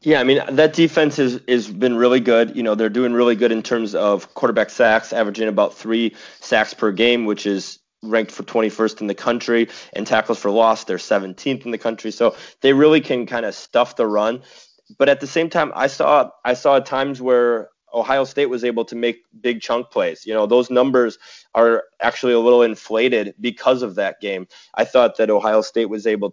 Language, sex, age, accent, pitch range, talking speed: English, male, 20-39, American, 105-125 Hz, 215 wpm